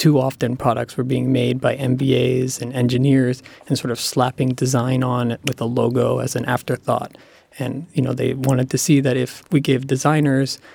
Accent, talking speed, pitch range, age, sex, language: American, 195 wpm, 120-135 Hz, 20-39, male, English